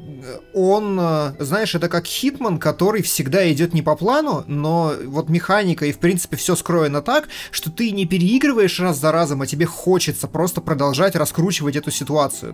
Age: 20-39